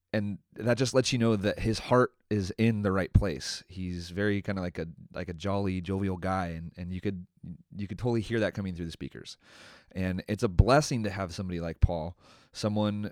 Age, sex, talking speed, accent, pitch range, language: 30-49, male, 220 wpm, American, 90-120 Hz, English